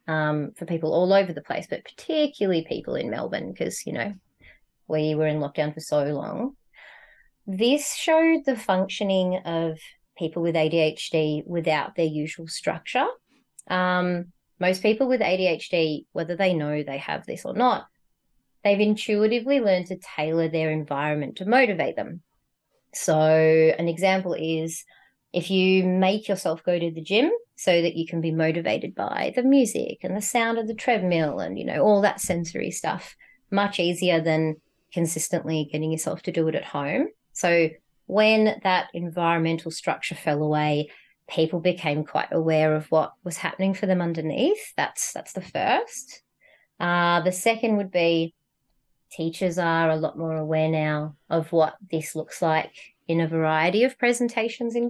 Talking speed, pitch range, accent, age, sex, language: 160 wpm, 160-200 Hz, Australian, 30-49, female, English